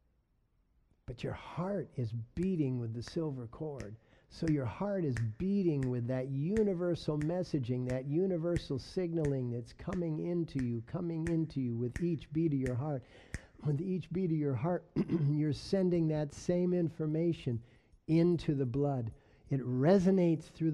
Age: 50-69